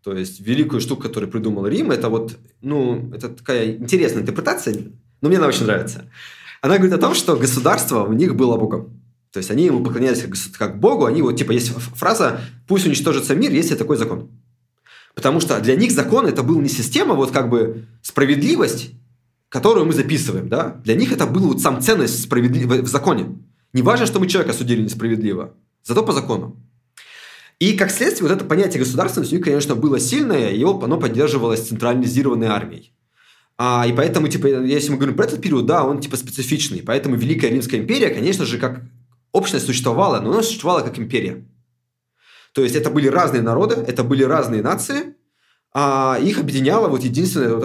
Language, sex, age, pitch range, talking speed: Russian, male, 20-39, 115-140 Hz, 185 wpm